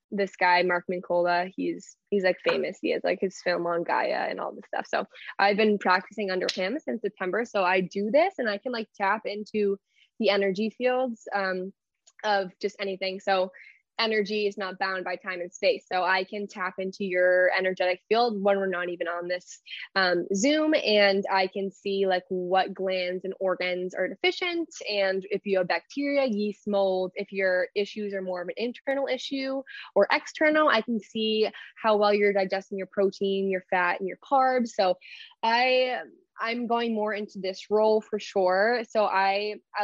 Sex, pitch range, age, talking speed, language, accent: female, 185-220 Hz, 10-29, 190 wpm, English, American